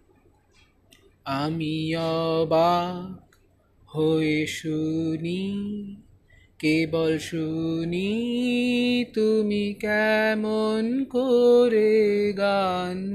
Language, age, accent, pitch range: English, 30-49, Indian, 155-225 Hz